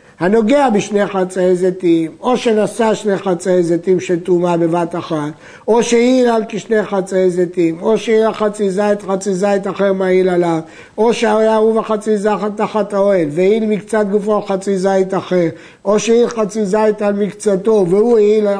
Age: 60-79